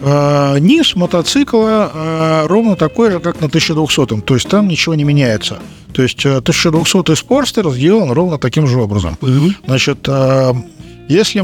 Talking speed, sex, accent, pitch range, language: 145 wpm, male, native, 135-175 Hz, Russian